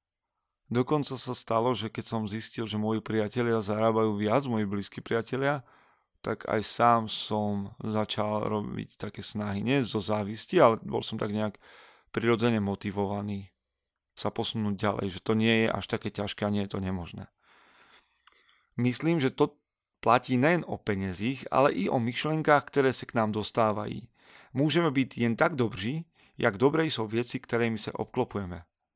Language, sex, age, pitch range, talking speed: Slovak, male, 40-59, 105-125 Hz, 155 wpm